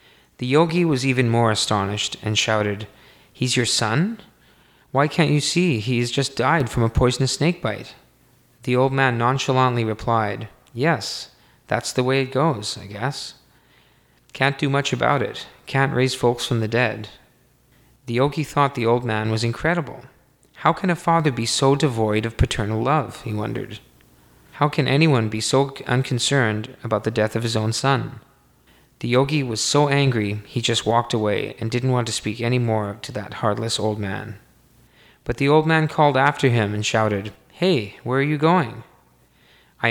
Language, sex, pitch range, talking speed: English, male, 110-140 Hz, 175 wpm